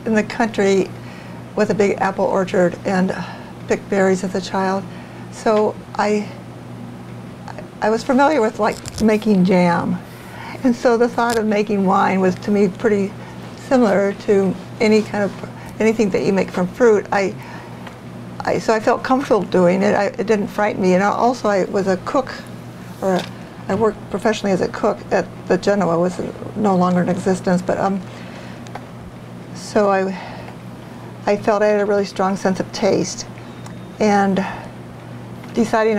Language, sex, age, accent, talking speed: English, female, 60-79, American, 165 wpm